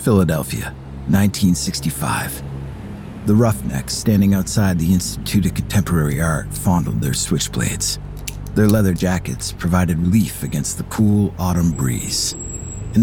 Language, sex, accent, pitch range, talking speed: English, male, American, 80-110 Hz, 115 wpm